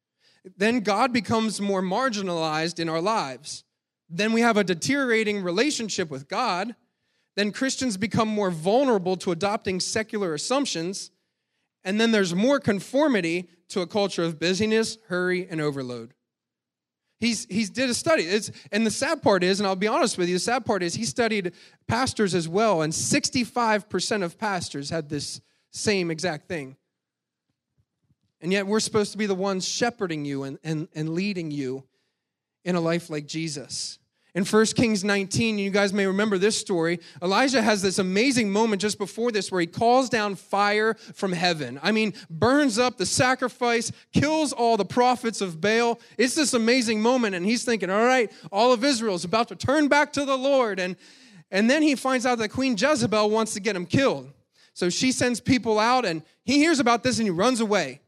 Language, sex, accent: English, male, American